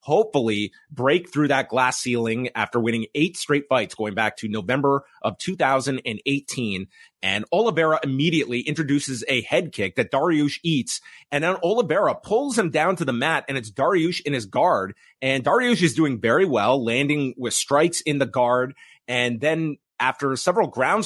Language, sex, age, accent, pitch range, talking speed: English, male, 30-49, American, 125-160 Hz, 170 wpm